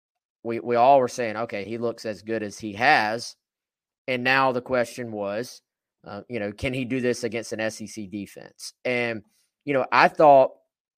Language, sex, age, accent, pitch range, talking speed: English, male, 20-39, American, 110-140 Hz, 185 wpm